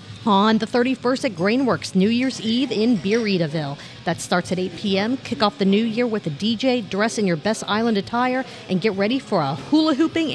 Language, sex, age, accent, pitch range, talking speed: English, female, 40-59, American, 185-245 Hz, 210 wpm